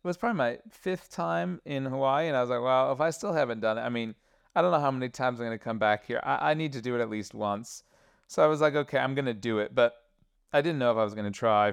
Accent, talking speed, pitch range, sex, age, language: American, 315 wpm, 115-140 Hz, male, 30-49, English